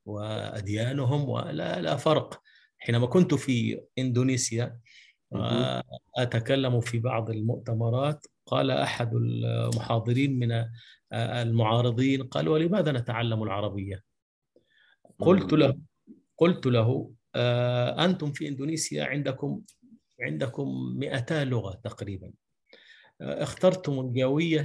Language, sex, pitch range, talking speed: Arabic, male, 115-145 Hz, 85 wpm